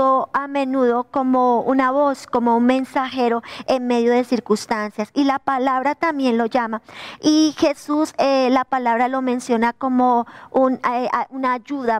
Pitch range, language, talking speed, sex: 245-290 Hz, Spanish, 145 wpm, male